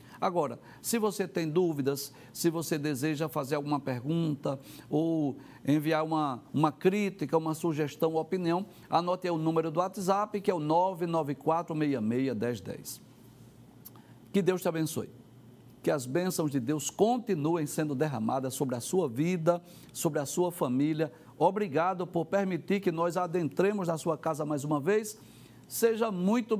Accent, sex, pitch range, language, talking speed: Brazilian, male, 145-195 Hz, Portuguese, 145 wpm